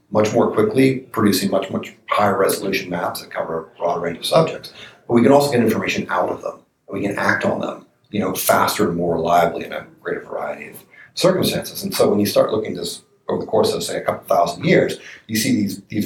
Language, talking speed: English, 240 wpm